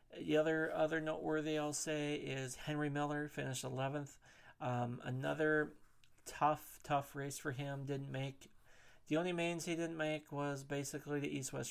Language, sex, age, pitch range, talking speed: English, male, 40-59, 125-150 Hz, 155 wpm